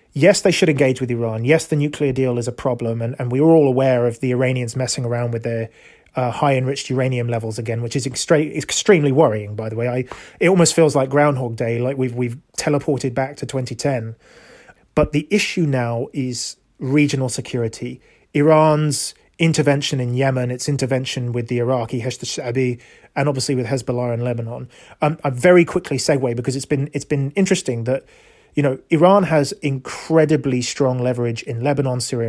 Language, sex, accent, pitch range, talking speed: English, male, British, 125-150 Hz, 185 wpm